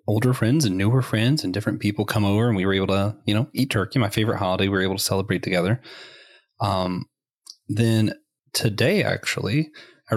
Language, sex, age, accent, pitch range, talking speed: English, male, 30-49, American, 105-130 Hz, 195 wpm